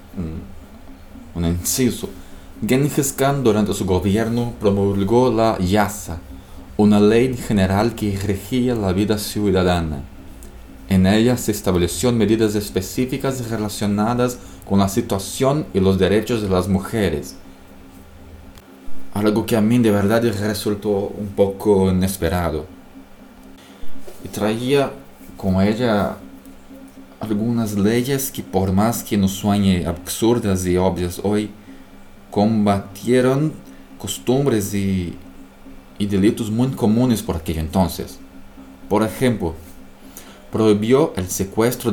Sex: male